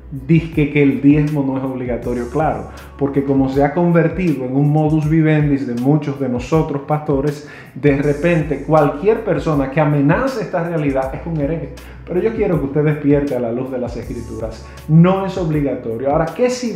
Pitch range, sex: 135-160 Hz, male